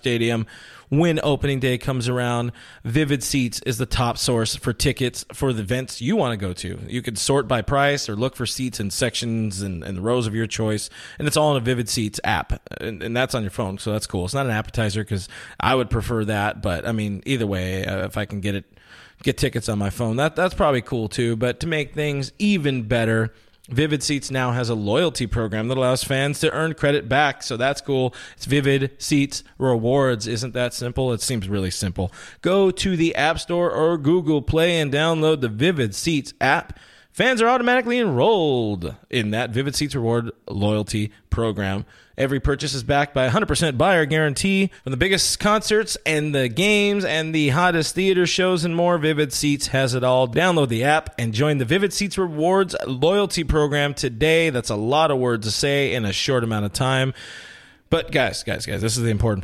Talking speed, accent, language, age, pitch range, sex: 210 wpm, American, English, 20-39, 115-145 Hz, male